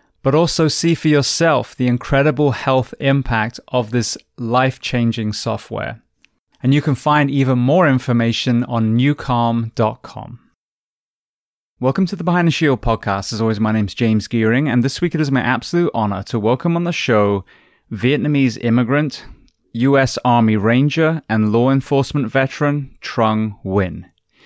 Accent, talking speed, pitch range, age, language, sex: British, 145 wpm, 110-135 Hz, 20-39, English, male